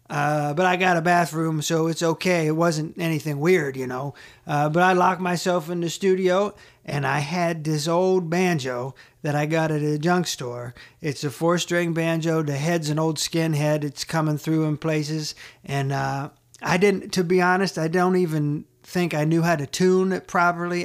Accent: American